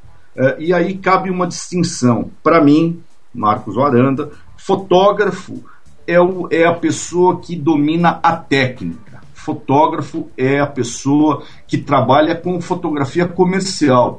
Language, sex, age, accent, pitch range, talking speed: Portuguese, male, 60-79, Brazilian, 130-180 Hz, 115 wpm